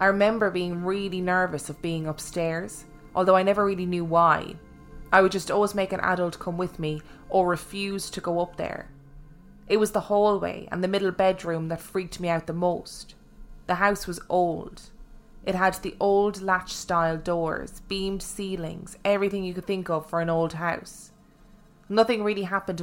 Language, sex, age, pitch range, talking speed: English, female, 20-39, 160-190 Hz, 180 wpm